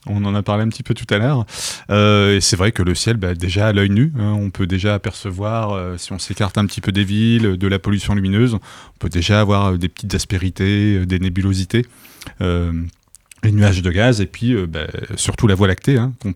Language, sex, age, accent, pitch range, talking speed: French, male, 30-49, French, 95-110 Hz, 225 wpm